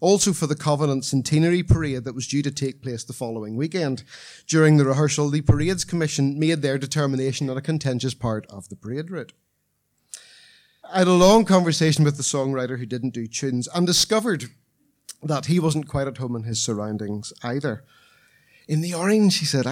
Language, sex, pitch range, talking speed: English, male, 115-155 Hz, 185 wpm